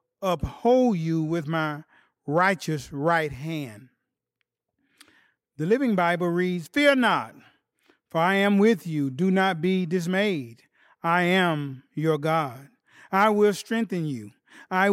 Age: 40-59